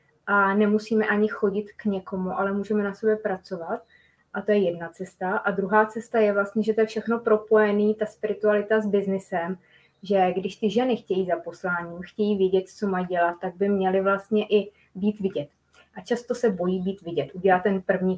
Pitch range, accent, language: 190-220 Hz, native, Czech